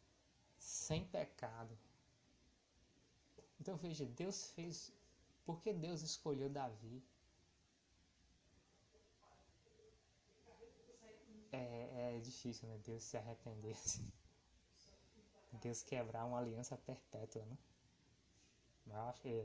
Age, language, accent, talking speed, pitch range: 20-39, Portuguese, Brazilian, 75 wpm, 115-150 Hz